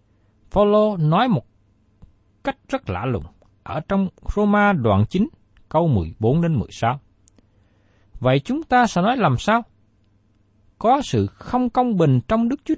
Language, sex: Vietnamese, male